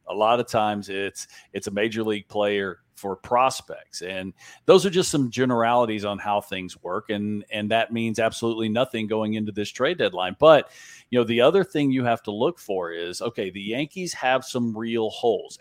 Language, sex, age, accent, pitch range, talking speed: English, male, 50-69, American, 105-135 Hz, 200 wpm